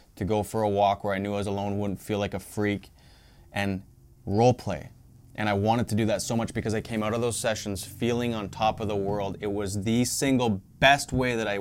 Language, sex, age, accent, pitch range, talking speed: English, male, 20-39, American, 100-120 Hz, 250 wpm